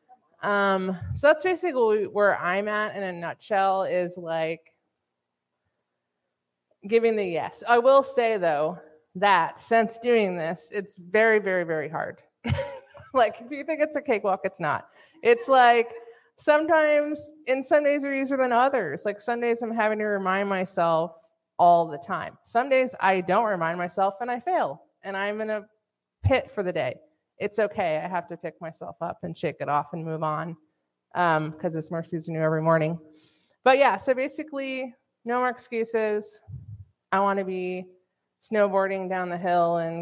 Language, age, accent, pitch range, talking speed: English, 30-49, American, 155-225 Hz, 170 wpm